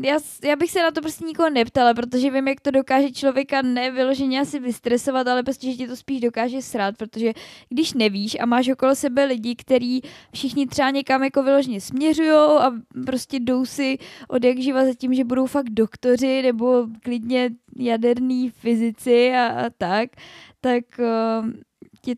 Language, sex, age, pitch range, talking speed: Czech, female, 10-29, 240-270 Hz, 170 wpm